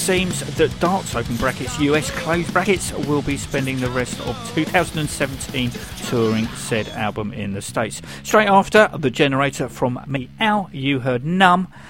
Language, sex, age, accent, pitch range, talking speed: English, male, 50-69, British, 125-180 Hz, 150 wpm